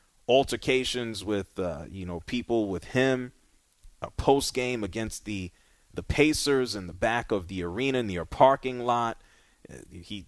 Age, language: 30-49, English